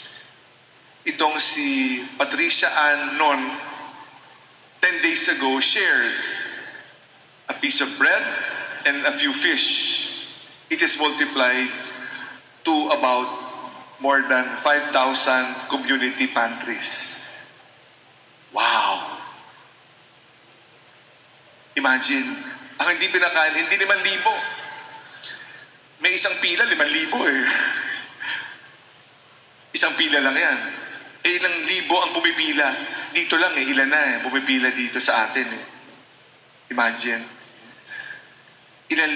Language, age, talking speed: Filipino, 50-69, 90 wpm